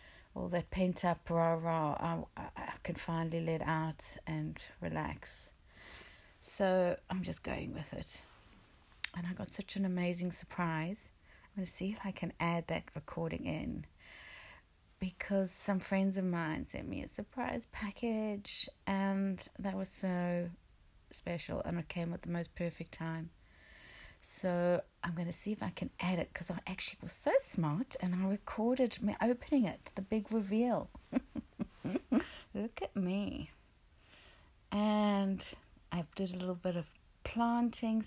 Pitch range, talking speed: 170-200 Hz, 150 wpm